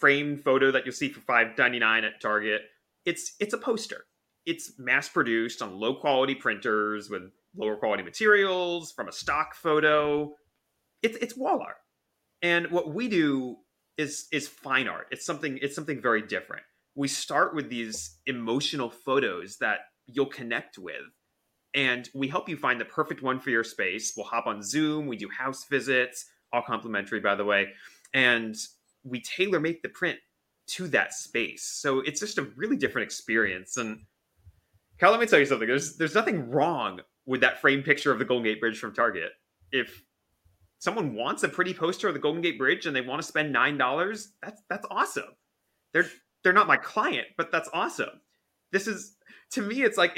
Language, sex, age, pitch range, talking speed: English, male, 30-49, 120-170 Hz, 180 wpm